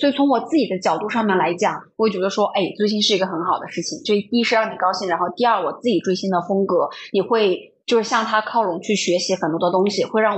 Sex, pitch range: female, 205-285 Hz